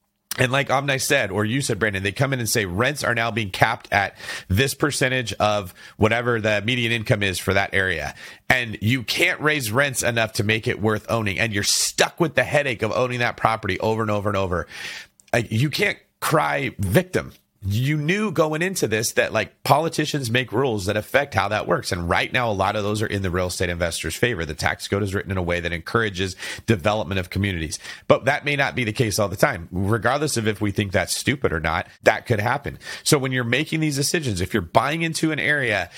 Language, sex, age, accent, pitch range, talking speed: English, male, 30-49, American, 105-140 Hz, 225 wpm